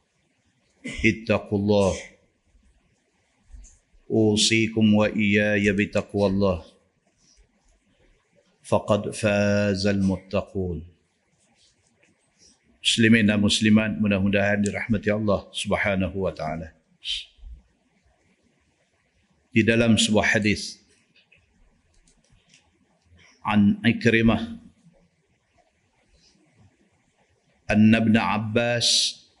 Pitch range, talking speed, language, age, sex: 100-115 Hz, 55 wpm, Malay, 50-69, male